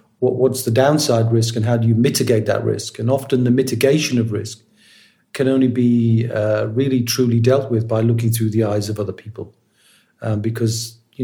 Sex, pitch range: male, 110-125 Hz